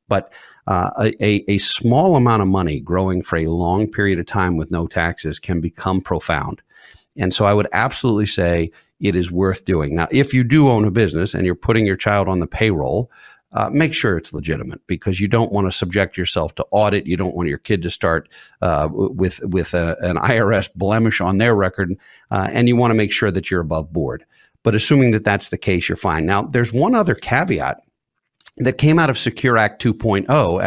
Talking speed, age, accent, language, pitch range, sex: 205 wpm, 50-69, American, English, 90-115 Hz, male